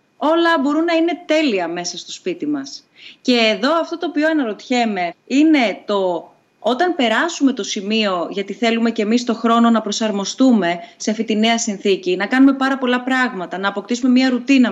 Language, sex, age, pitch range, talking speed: Greek, female, 30-49, 195-260 Hz, 175 wpm